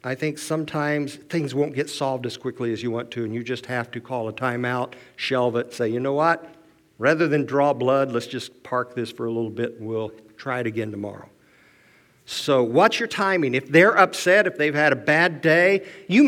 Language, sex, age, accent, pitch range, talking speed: English, male, 50-69, American, 125-175 Hz, 220 wpm